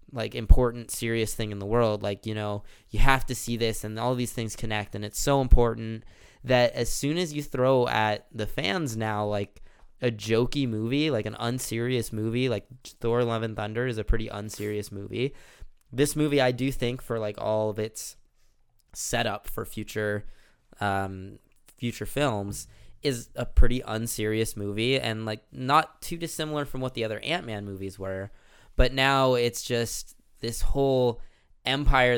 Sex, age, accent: male, 20-39, American